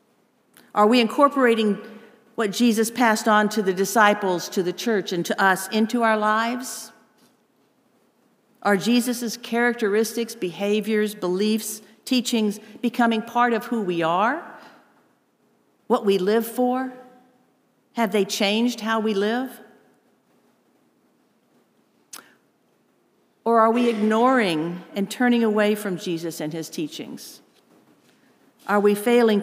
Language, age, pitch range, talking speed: English, 50-69, 190-235 Hz, 115 wpm